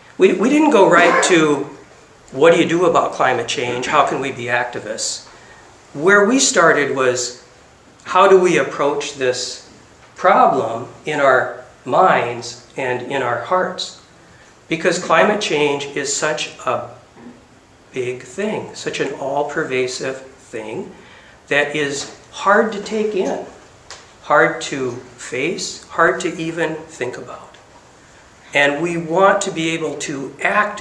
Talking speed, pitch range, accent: 135 wpm, 130-190 Hz, American